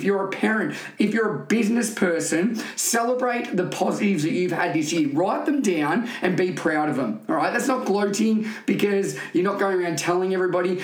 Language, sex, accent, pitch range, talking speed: English, male, Australian, 160-200 Hz, 210 wpm